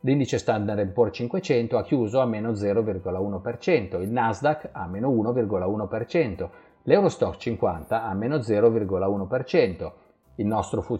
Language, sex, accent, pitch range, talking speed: Italian, male, native, 95-140 Hz, 115 wpm